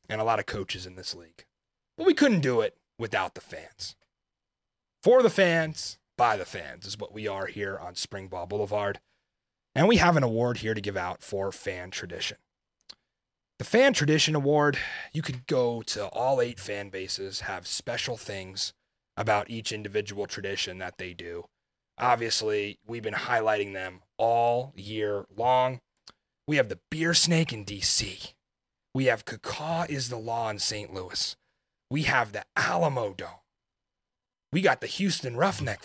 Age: 30-49